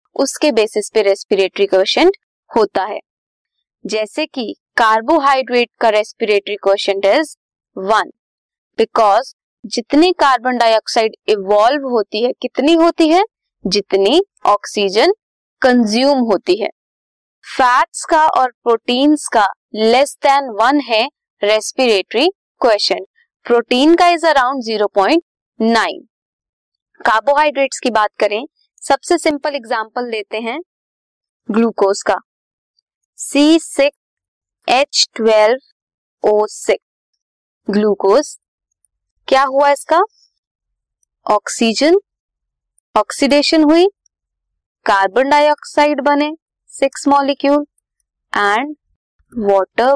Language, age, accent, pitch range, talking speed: Hindi, 20-39, native, 210-290 Hz, 85 wpm